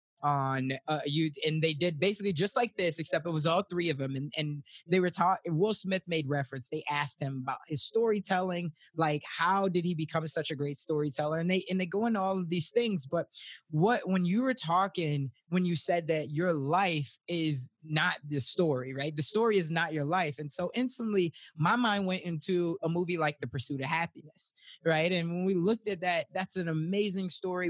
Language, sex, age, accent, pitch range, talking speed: English, male, 20-39, American, 155-200 Hz, 210 wpm